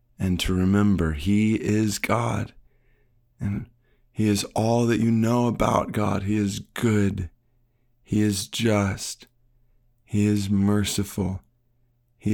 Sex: male